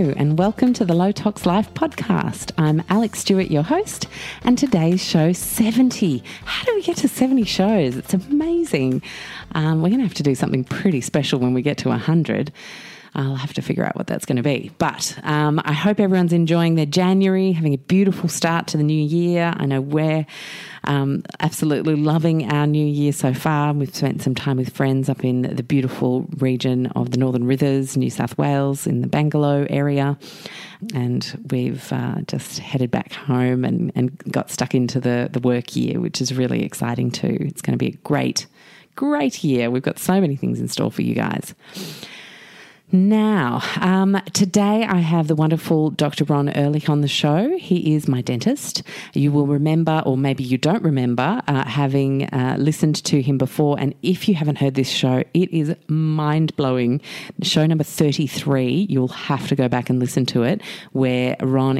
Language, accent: English, Australian